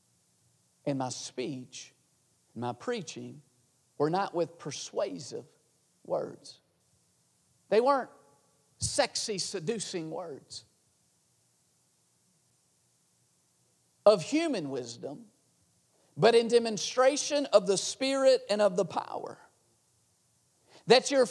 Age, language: 50-69, English